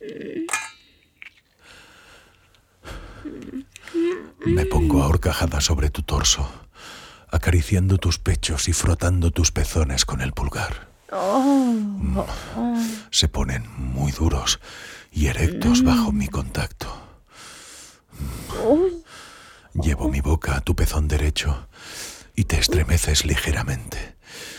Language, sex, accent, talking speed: Spanish, male, Spanish, 90 wpm